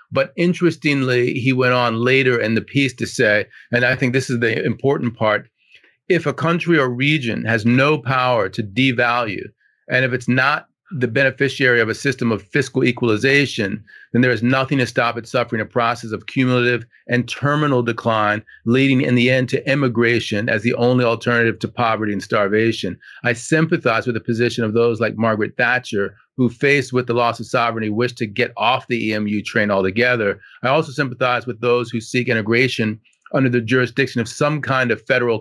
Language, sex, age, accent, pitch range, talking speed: English, male, 40-59, American, 115-130 Hz, 190 wpm